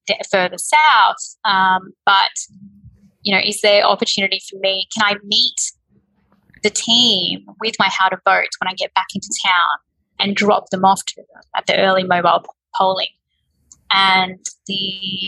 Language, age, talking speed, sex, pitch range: English, 20-39, 150 wpm, female, 190-215 Hz